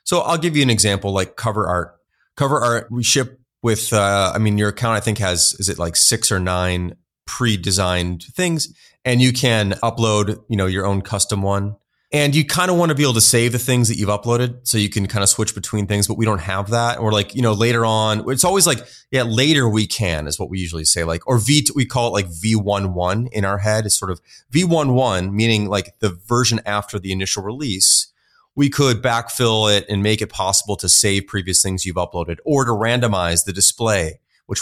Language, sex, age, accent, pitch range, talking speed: English, male, 30-49, American, 100-120 Hz, 225 wpm